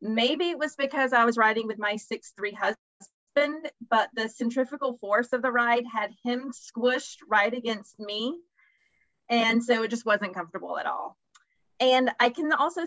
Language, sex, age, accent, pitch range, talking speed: English, female, 30-49, American, 210-255 Hz, 170 wpm